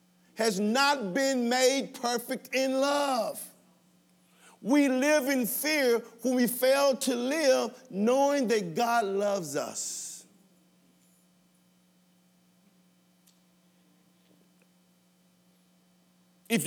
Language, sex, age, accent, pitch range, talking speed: English, male, 50-69, American, 180-260 Hz, 80 wpm